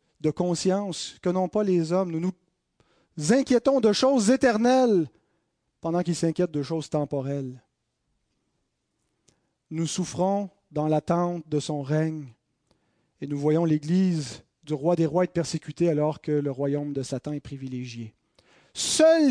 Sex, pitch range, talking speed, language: male, 155-245 Hz, 140 wpm, French